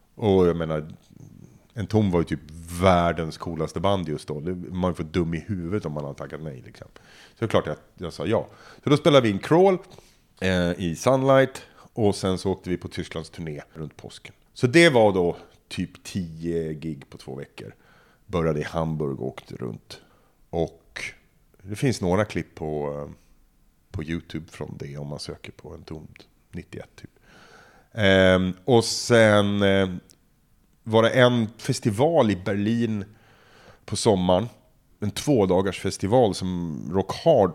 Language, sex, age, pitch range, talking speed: Swedish, male, 40-59, 85-105 Hz, 165 wpm